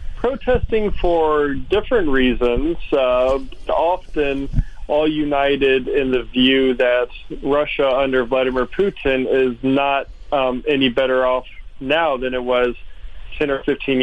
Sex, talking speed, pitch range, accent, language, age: male, 125 wpm, 130-145 Hz, American, English, 40-59